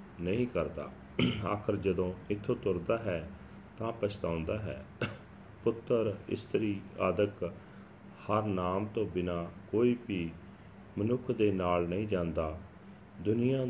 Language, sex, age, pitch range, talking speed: Punjabi, male, 40-59, 90-115 Hz, 110 wpm